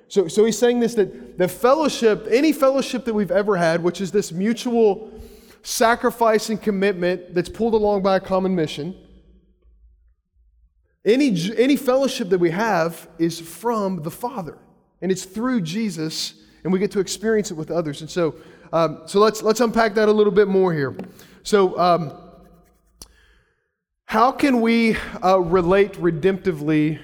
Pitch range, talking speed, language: 175-225 Hz, 160 wpm, English